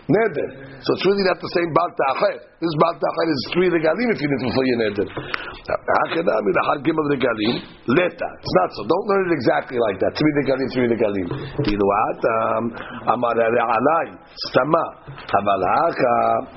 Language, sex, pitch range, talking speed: English, male, 120-160 Hz, 180 wpm